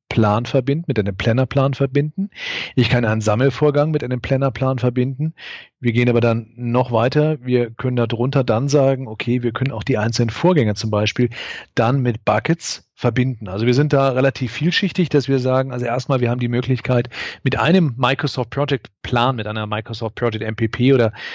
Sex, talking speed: male, 170 wpm